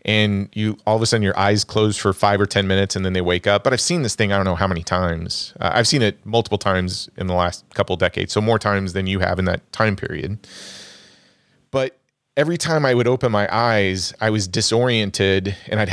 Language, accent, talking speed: English, American, 245 wpm